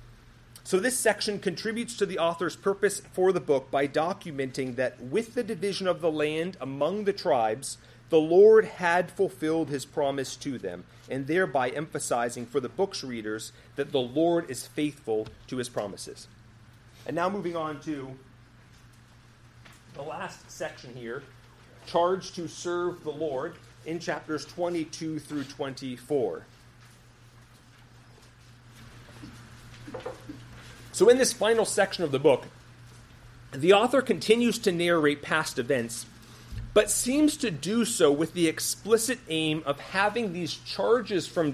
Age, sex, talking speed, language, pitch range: 40-59, male, 135 wpm, English, 120-190 Hz